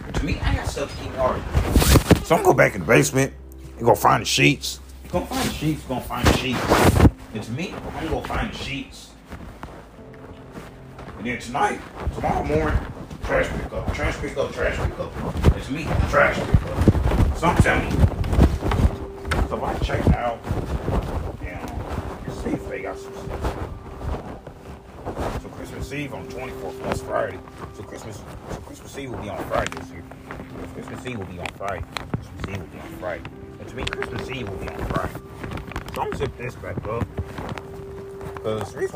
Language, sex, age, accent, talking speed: English, male, 30-49, American, 185 wpm